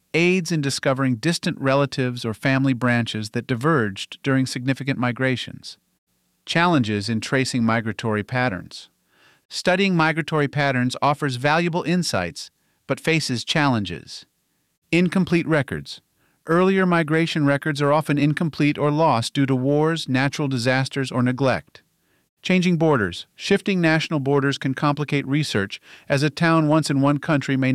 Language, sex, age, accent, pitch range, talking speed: English, male, 50-69, American, 125-155 Hz, 130 wpm